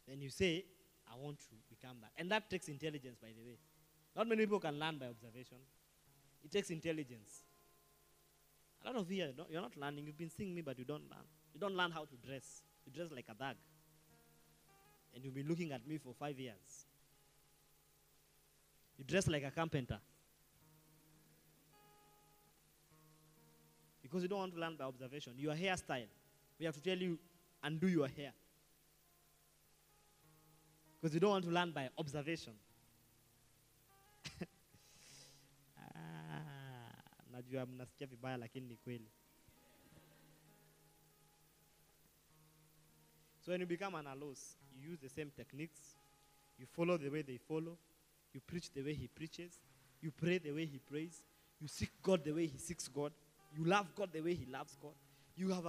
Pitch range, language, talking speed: 130-165 Hz, English, 150 wpm